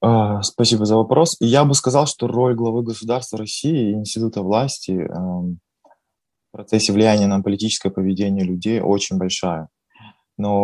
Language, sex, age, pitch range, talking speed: Russian, male, 20-39, 95-110 Hz, 140 wpm